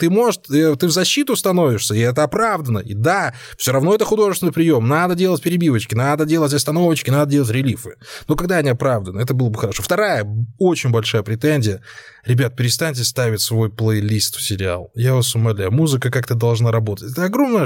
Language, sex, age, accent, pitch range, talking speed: Russian, male, 20-39, native, 115-155 Hz, 180 wpm